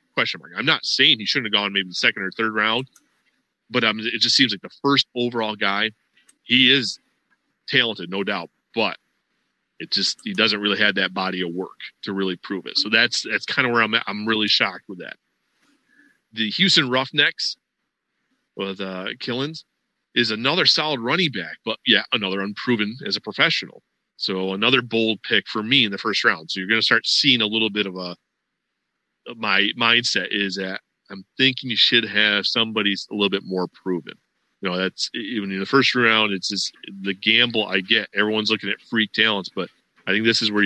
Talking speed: 200 wpm